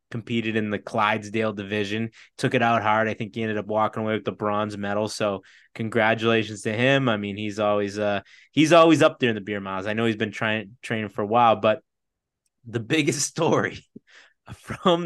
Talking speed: 205 wpm